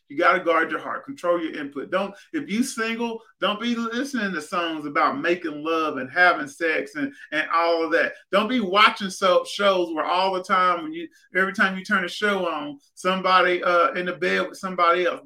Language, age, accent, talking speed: English, 40-59, American, 210 wpm